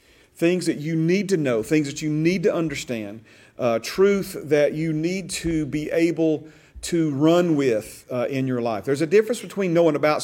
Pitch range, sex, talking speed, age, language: 125-160 Hz, male, 195 wpm, 40-59, English